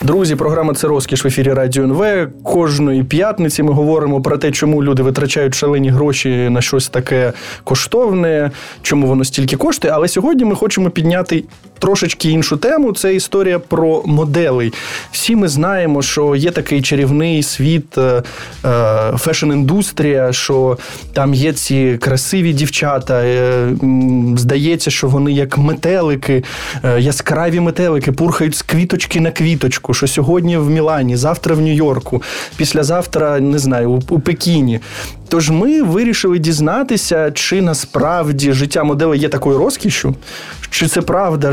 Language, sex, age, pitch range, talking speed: Ukrainian, male, 20-39, 135-165 Hz, 135 wpm